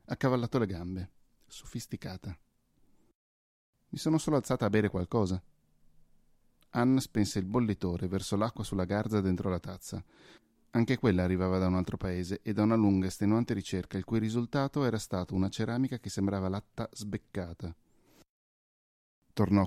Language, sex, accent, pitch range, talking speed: Italian, male, native, 95-115 Hz, 145 wpm